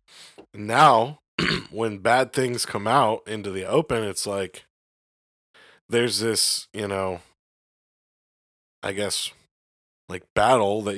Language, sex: English, male